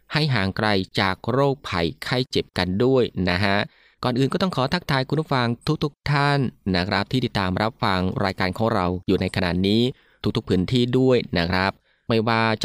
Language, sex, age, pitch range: Thai, male, 20-39, 100-130 Hz